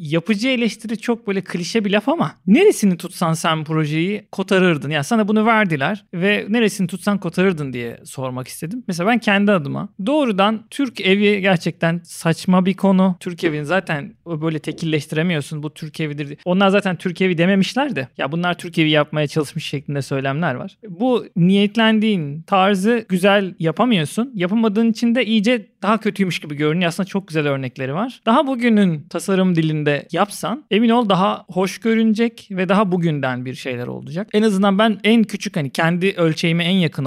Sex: male